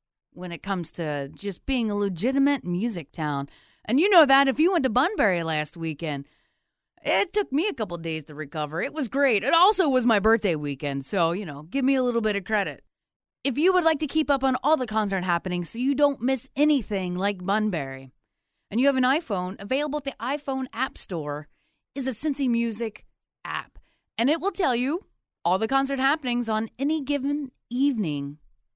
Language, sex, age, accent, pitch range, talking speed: English, female, 30-49, American, 185-270 Hz, 200 wpm